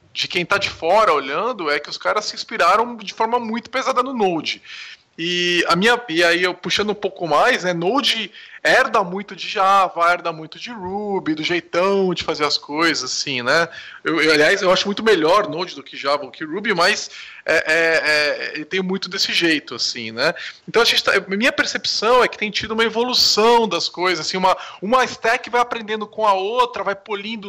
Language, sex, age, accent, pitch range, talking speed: Portuguese, male, 20-39, Brazilian, 175-230 Hz, 205 wpm